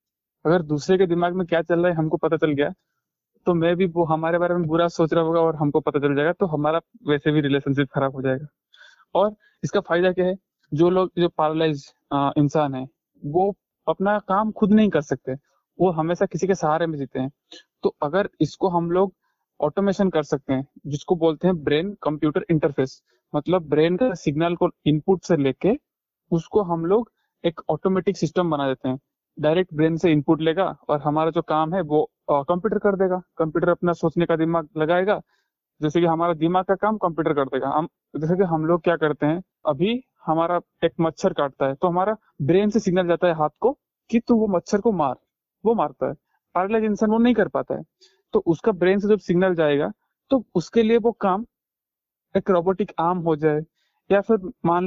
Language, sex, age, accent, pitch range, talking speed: Hindi, male, 20-39, native, 155-190 Hz, 195 wpm